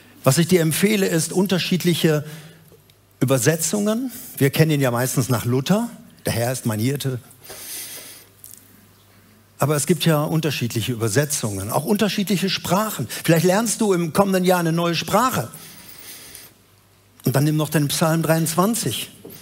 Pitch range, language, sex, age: 130-175 Hz, German, male, 60-79